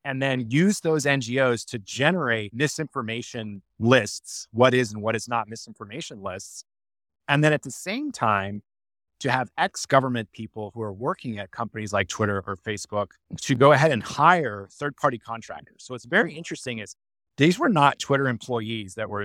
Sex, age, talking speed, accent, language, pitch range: male, 30-49, 170 wpm, American, English, 110-145 Hz